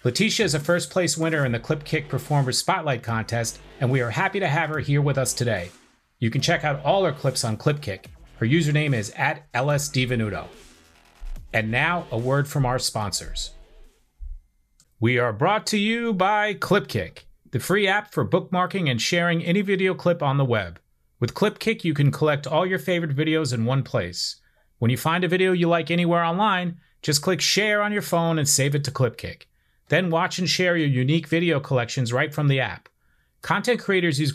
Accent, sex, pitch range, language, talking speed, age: American, male, 125-175 Hz, English, 195 wpm, 30-49